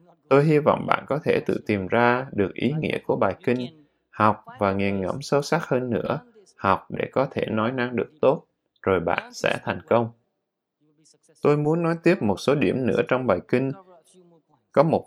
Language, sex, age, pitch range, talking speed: Vietnamese, male, 20-39, 115-165 Hz, 195 wpm